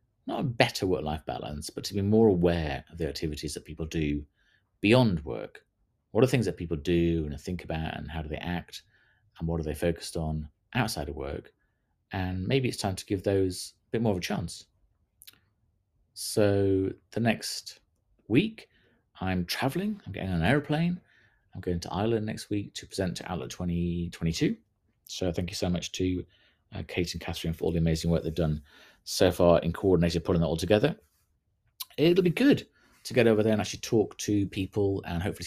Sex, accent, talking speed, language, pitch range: male, British, 195 wpm, English, 80-105 Hz